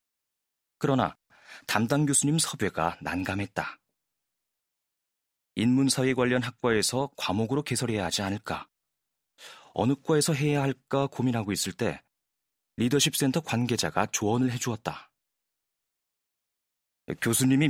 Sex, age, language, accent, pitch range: male, 30-49, Korean, native, 95-130 Hz